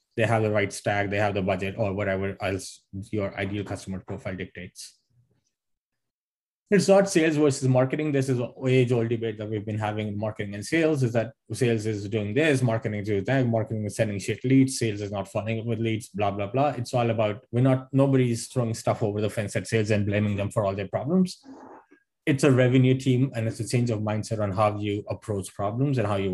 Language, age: English, 20-39